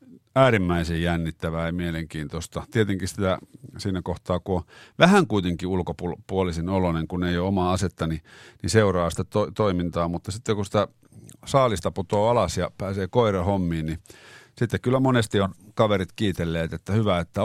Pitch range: 85-105 Hz